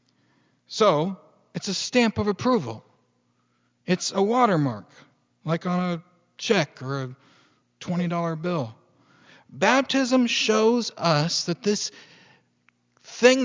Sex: male